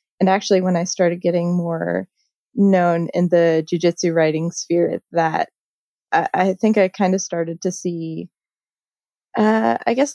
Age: 20-39